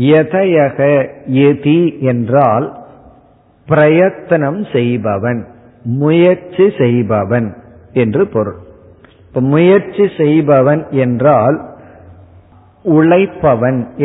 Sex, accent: male, native